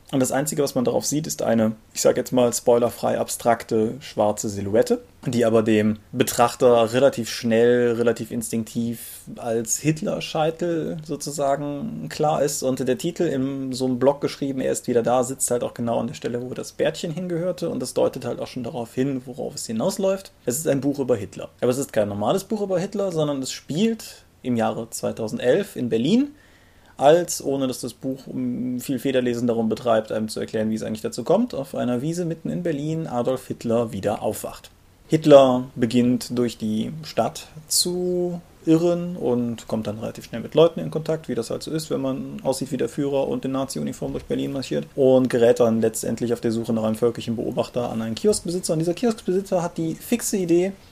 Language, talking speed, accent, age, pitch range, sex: German, 195 wpm, German, 30-49, 115-160 Hz, male